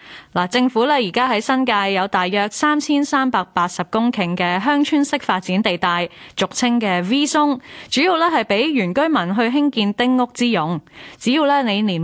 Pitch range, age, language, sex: 185-265 Hz, 10-29, Chinese, female